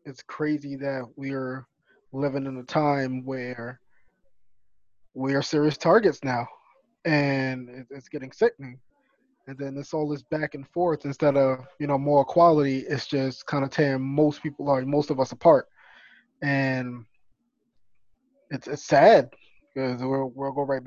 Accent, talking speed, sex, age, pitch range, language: American, 150 wpm, male, 20-39, 130-155 Hz, English